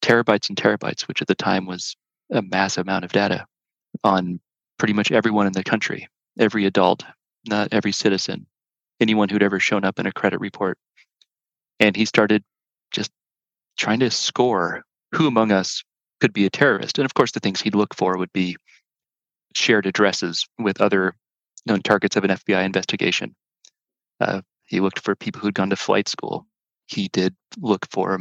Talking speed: 175 wpm